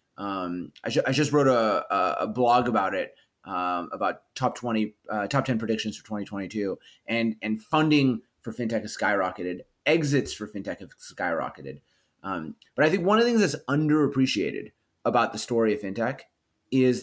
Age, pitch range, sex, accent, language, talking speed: 30-49, 100-130 Hz, male, American, English, 165 wpm